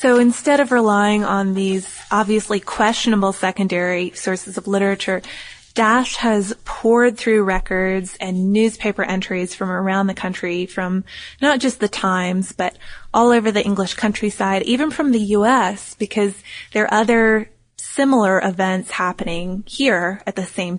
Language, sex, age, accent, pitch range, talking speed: English, female, 20-39, American, 190-230 Hz, 145 wpm